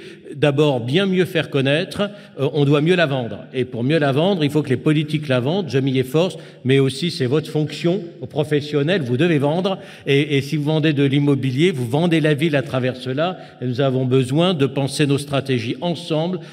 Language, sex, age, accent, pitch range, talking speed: French, male, 50-69, French, 135-160 Hz, 210 wpm